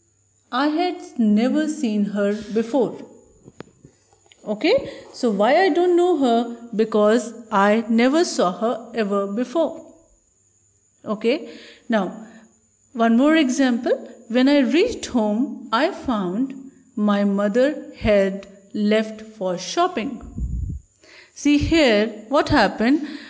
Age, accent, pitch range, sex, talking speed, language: 40-59, Indian, 210-285 Hz, female, 105 wpm, English